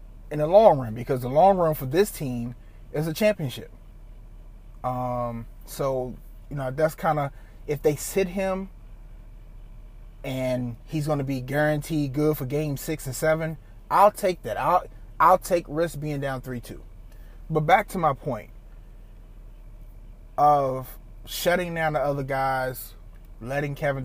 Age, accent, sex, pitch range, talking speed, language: 30-49, American, male, 115-160 Hz, 150 wpm, English